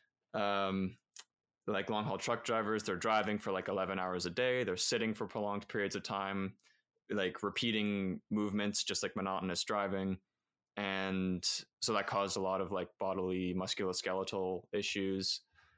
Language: English